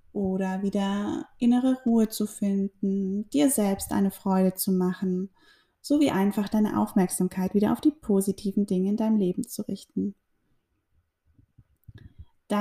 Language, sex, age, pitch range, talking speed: German, female, 20-39, 185-220 Hz, 130 wpm